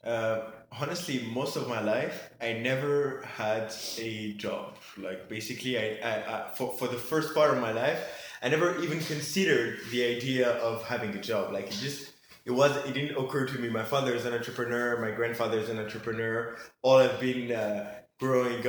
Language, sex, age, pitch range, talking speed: English, male, 20-39, 115-135 Hz, 185 wpm